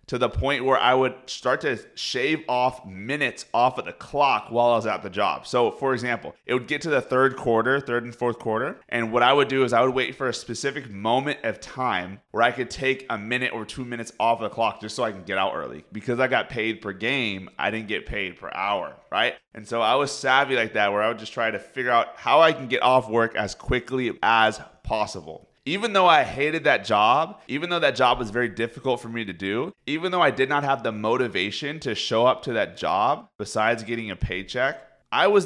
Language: English